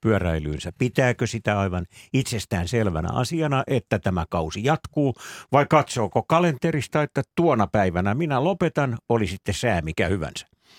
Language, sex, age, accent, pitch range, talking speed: Finnish, male, 60-79, native, 90-125 Hz, 135 wpm